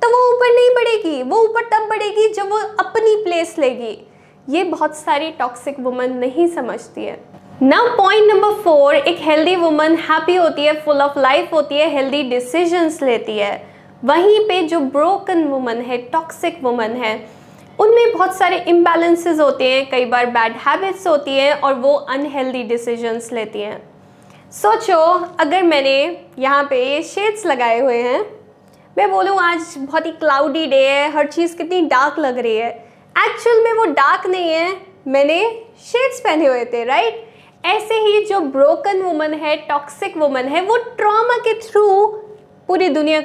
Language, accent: Hindi, native